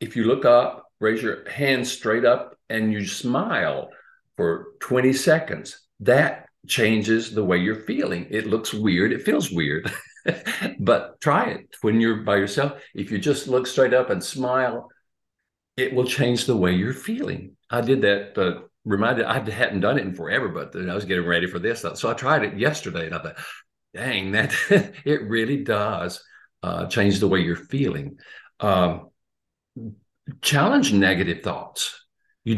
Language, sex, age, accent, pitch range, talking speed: English, male, 50-69, American, 95-140 Hz, 170 wpm